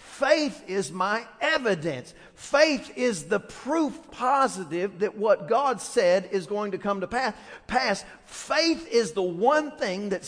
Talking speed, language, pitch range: 145 wpm, English, 195-260 Hz